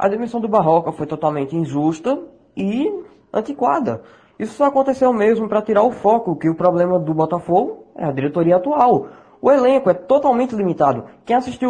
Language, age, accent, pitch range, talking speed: Portuguese, 20-39, Brazilian, 160-250 Hz, 170 wpm